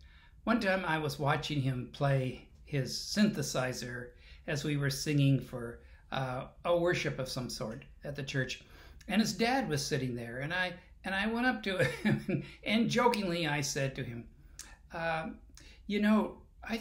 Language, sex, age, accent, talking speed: English, male, 60-79, American, 170 wpm